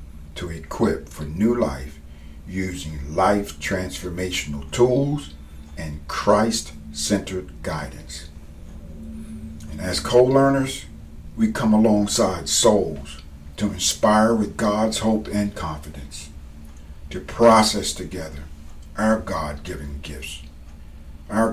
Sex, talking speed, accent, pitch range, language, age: male, 90 wpm, American, 75-100 Hz, English, 50-69